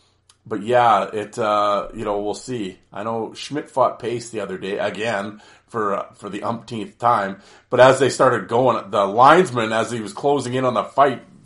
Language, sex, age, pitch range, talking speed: English, male, 40-59, 100-125 Hz, 200 wpm